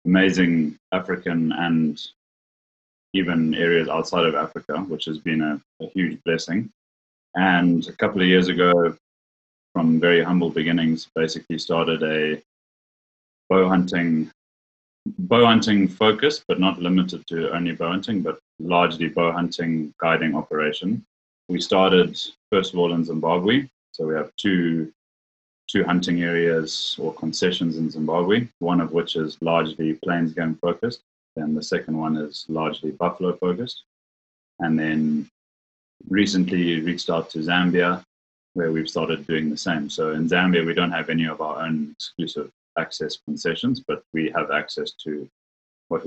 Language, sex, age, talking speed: English, male, 30-49, 145 wpm